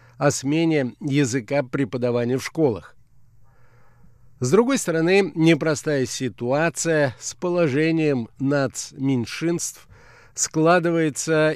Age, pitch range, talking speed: 50-69, 120-160 Hz, 80 wpm